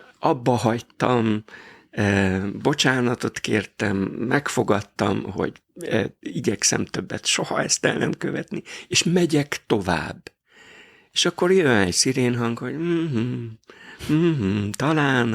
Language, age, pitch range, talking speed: Hungarian, 60-79, 100-120 Hz, 105 wpm